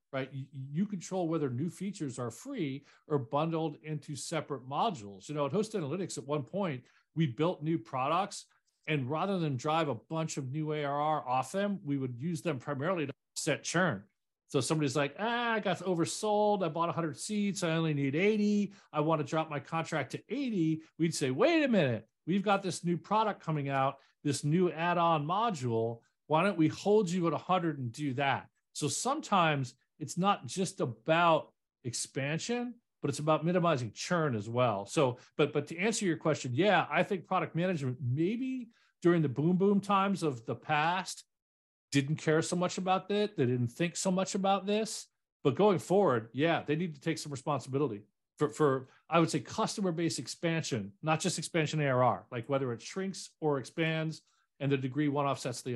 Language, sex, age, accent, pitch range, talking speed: English, male, 40-59, American, 140-185 Hz, 190 wpm